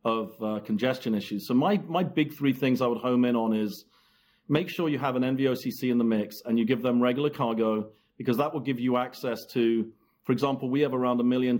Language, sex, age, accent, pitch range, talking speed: English, male, 40-59, British, 115-135 Hz, 235 wpm